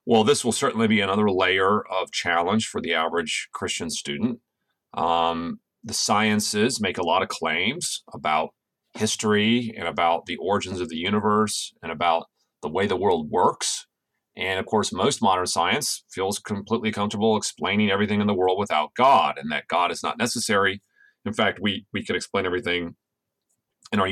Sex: male